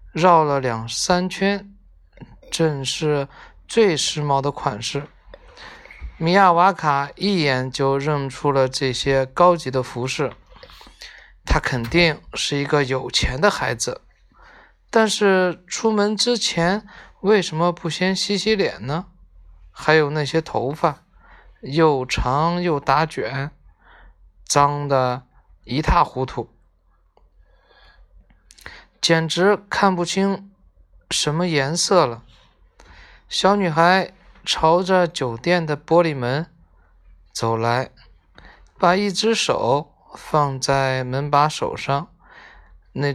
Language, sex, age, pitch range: Chinese, male, 20-39, 130-175 Hz